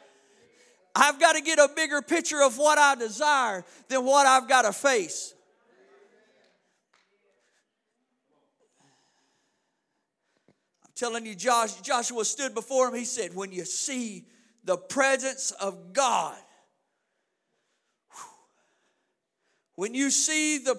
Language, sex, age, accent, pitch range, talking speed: English, male, 50-69, American, 220-275 Hz, 105 wpm